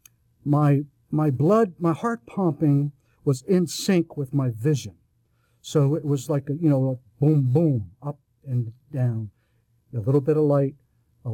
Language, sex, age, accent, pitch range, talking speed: English, male, 60-79, American, 130-165 Hz, 165 wpm